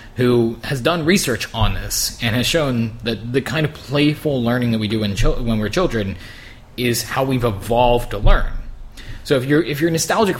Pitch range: 100-120 Hz